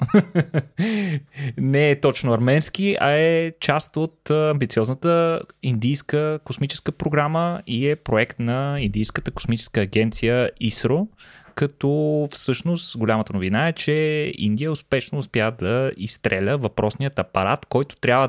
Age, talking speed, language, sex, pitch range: 20-39, 115 wpm, Bulgarian, male, 110-155 Hz